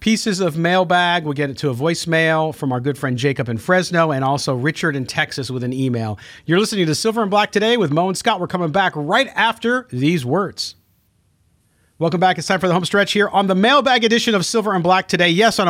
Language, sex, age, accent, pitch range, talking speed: English, male, 40-59, American, 125-180 Hz, 235 wpm